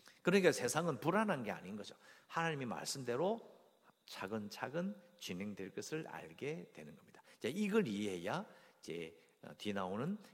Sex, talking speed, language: male, 115 wpm, English